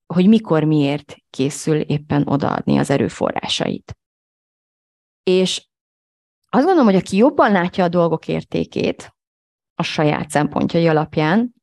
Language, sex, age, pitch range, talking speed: Hungarian, female, 30-49, 150-175 Hz, 115 wpm